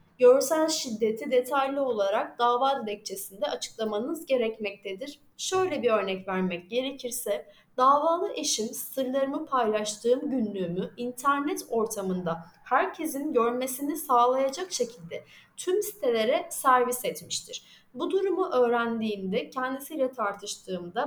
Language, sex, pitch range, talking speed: Turkish, female, 215-295 Hz, 95 wpm